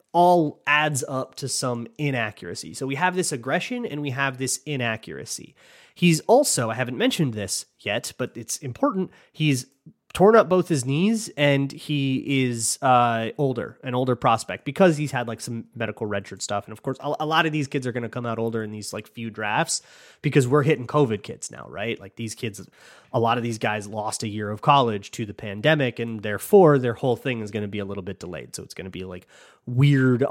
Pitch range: 110-145 Hz